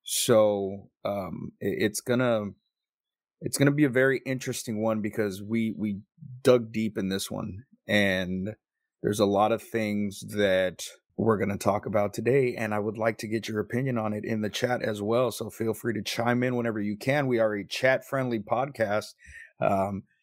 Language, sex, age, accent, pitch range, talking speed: English, male, 30-49, American, 105-125 Hz, 195 wpm